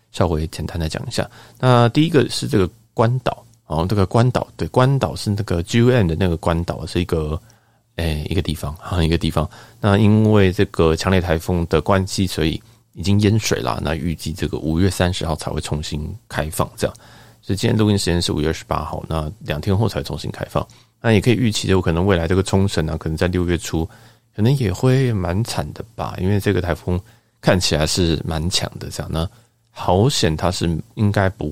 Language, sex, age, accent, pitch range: Chinese, male, 30-49, native, 80-115 Hz